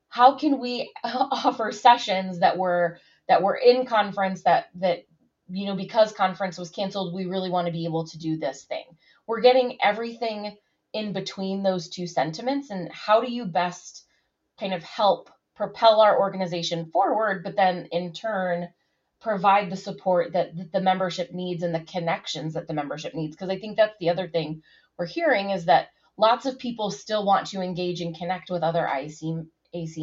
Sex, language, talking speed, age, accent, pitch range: female, English, 185 wpm, 20-39, American, 170-205 Hz